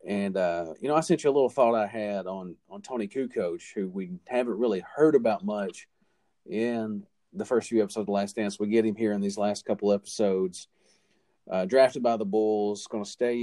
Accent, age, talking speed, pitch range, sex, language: American, 40-59, 220 wpm, 95-110 Hz, male, English